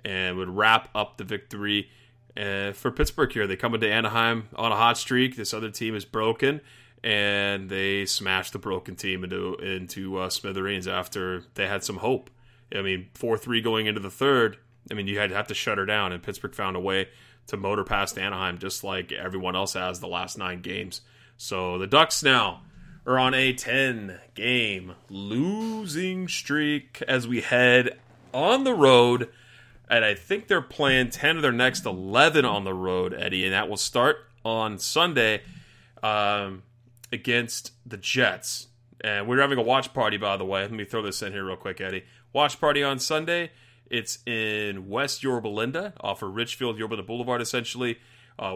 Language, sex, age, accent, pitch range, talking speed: English, male, 30-49, American, 100-125 Hz, 180 wpm